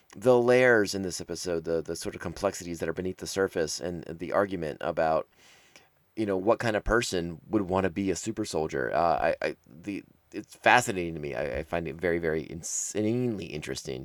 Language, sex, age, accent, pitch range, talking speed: English, male, 30-49, American, 90-115 Hz, 190 wpm